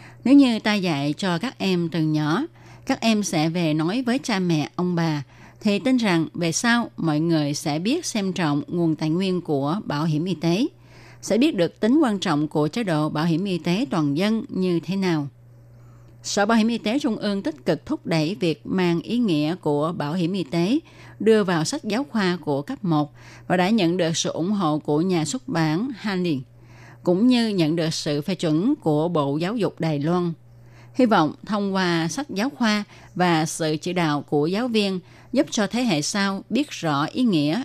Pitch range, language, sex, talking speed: 150-205 Hz, Vietnamese, female, 210 wpm